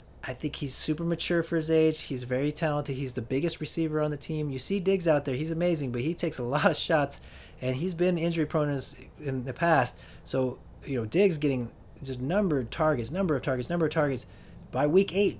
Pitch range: 125-160 Hz